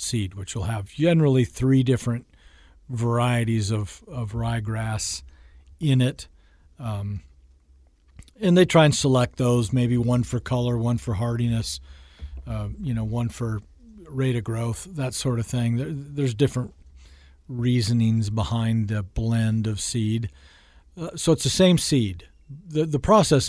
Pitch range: 105-130 Hz